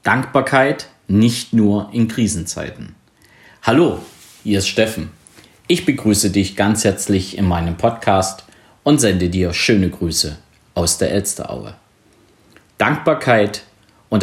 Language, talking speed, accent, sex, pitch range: German, 115 wpm, German, male, 100-125 Hz